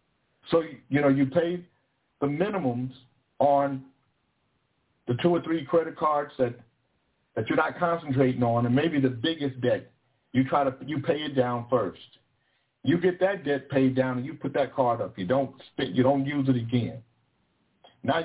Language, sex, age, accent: English, male, 50-69, American